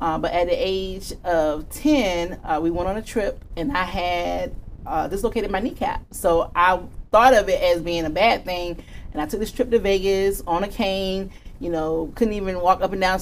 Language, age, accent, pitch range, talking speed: English, 30-49, American, 155-185 Hz, 220 wpm